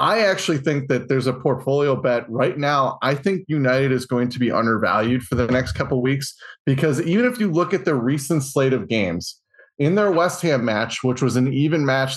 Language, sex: English, male